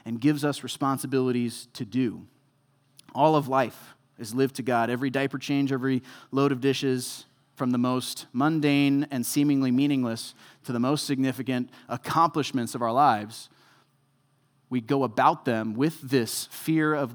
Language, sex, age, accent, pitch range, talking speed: English, male, 30-49, American, 125-150 Hz, 150 wpm